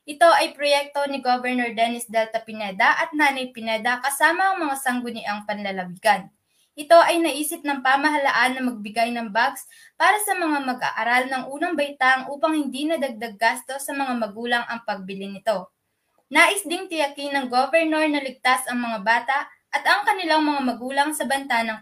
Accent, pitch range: native, 235-295 Hz